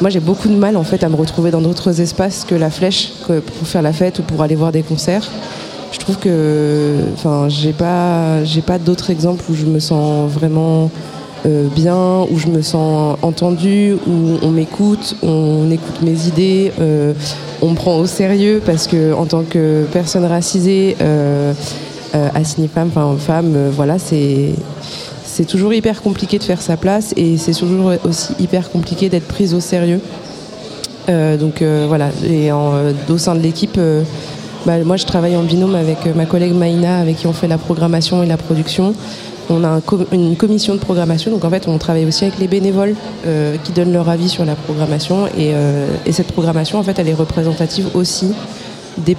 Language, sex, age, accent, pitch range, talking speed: French, female, 20-39, French, 155-185 Hz, 200 wpm